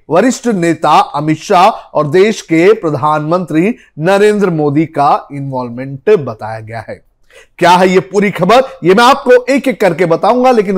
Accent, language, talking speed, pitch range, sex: native, Hindi, 155 wpm, 160-225 Hz, male